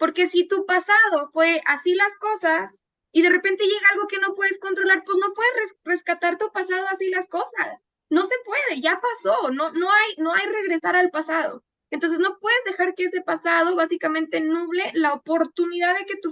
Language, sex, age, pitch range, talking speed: Spanish, female, 20-39, 310-380 Hz, 190 wpm